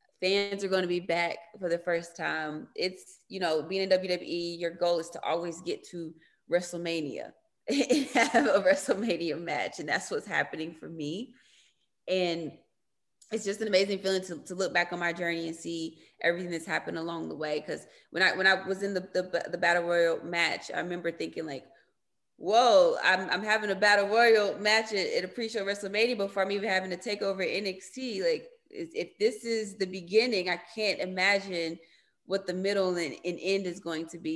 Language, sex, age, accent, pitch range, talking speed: English, female, 20-39, American, 170-205 Hz, 195 wpm